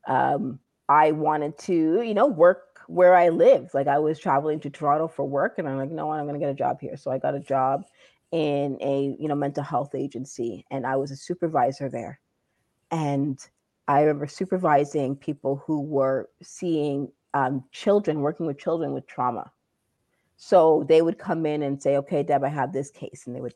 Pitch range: 135-165 Hz